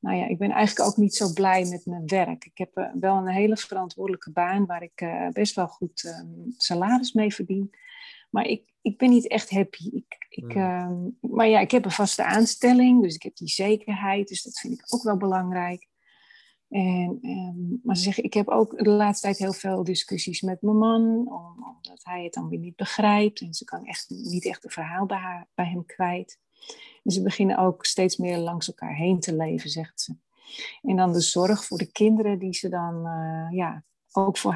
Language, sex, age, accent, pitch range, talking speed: Dutch, female, 40-59, Dutch, 175-210 Hz, 215 wpm